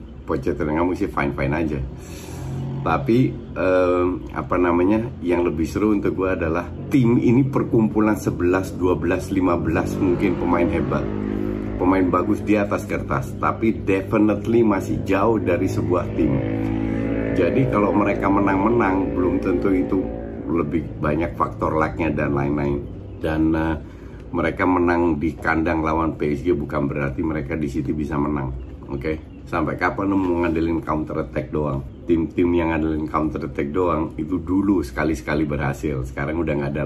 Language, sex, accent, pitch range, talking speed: Indonesian, male, native, 75-95 Hz, 145 wpm